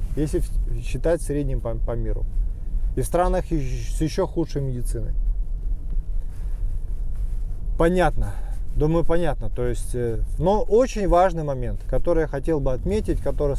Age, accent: 20-39, native